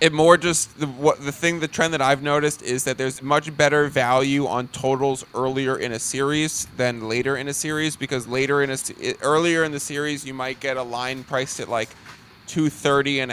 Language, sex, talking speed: English, male, 210 wpm